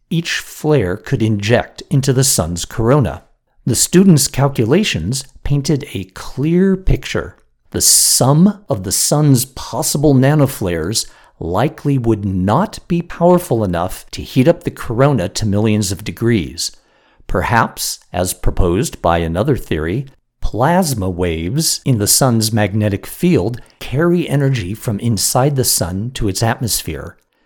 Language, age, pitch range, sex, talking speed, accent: English, 50-69, 105-145 Hz, male, 130 wpm, American